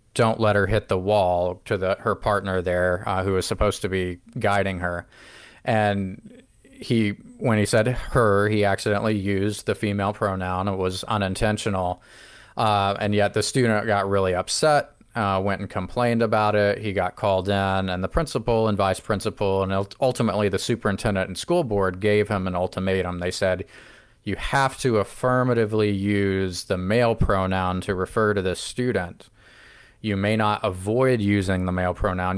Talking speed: 170 wpm